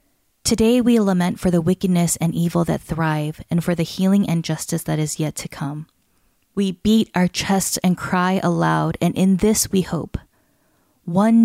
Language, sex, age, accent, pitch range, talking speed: English, female, 20-39, American, 155-195 Hz, 180 wpm